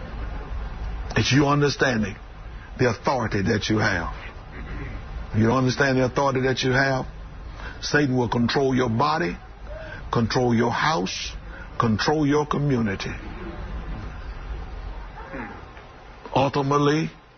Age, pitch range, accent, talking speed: 60-79, 120-160 Hz, American, 95 wpm